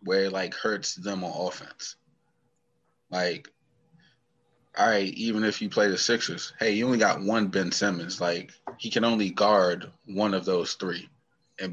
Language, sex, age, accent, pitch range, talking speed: English, male, 20-39, American, 95-115 Hz, 170 wpm